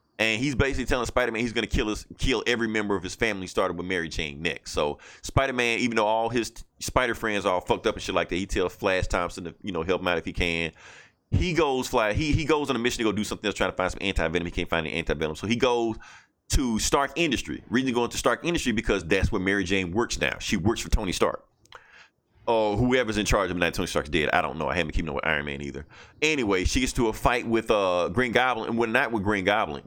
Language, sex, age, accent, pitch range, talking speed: English, male, 30-49, American, 95-120 Hz, 275 wpm